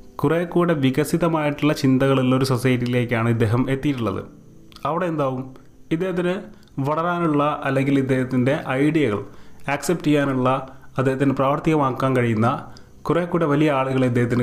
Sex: male